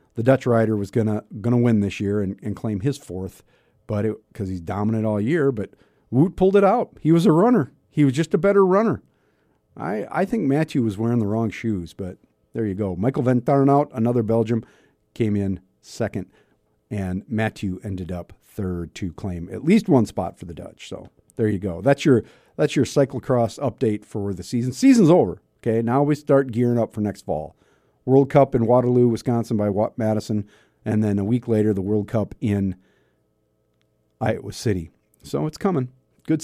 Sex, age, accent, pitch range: male, 50-69, American, 100-130 Hz